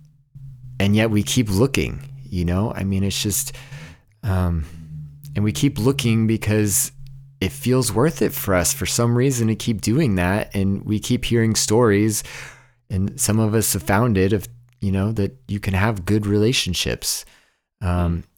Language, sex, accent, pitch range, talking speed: English, male, American, 95-115 Hz, 170 wpm